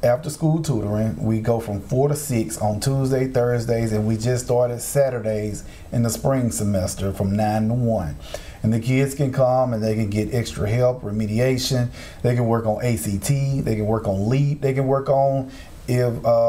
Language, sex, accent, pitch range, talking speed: English, male, American, 115-140 Hz, 190 wpm